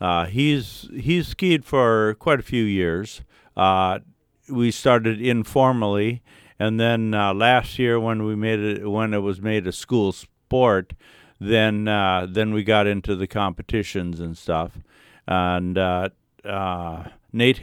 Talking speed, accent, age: 145 wpm, American, 50-69